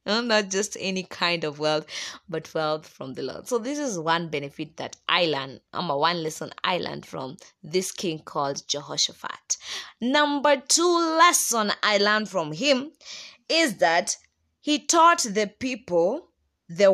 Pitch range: 170-240 Hz